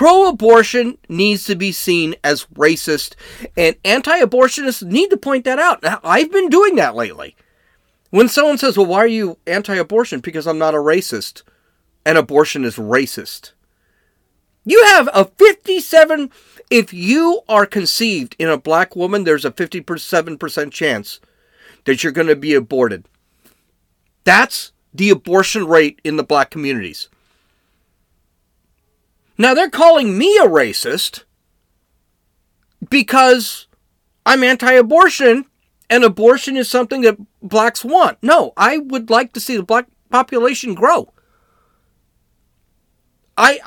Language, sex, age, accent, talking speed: English, male, 40-59, American, 130 wpm